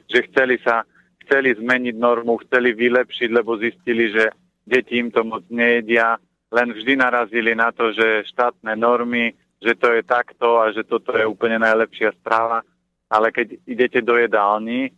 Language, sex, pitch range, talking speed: Slovak, male, 110-120 Hz, 160 wpm